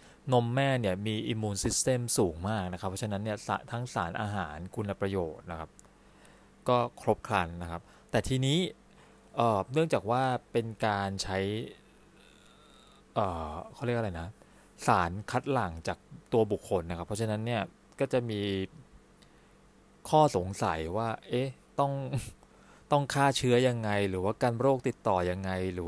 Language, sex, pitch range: Thai, male, 95-125 Hz